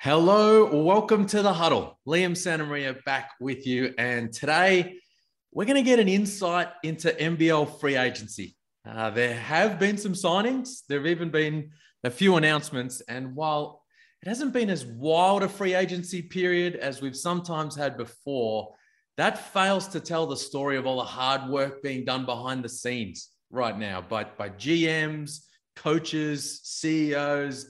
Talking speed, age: 160 wpm, 30-49